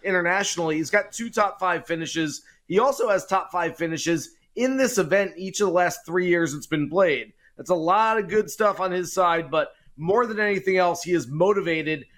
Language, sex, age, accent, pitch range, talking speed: English, male, 30-49, American, 165-190 Hz, 205 wpm